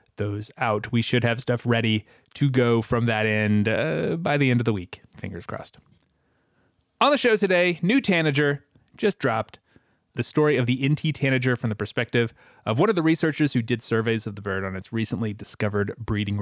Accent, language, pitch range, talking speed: American, English, 110-150 Hz, 195 wpm